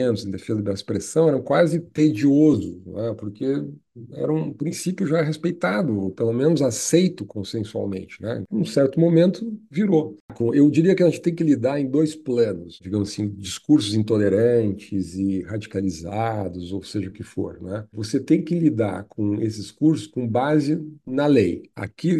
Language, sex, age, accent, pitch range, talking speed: Portuguese, male, 50-69, Brazilian, 100-145 Hz, 160 wpm